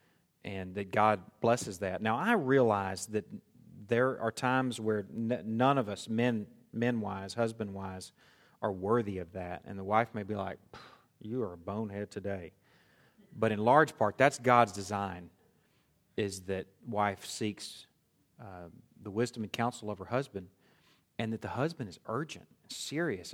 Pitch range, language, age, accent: 100-125 Hz, English, 40-59, American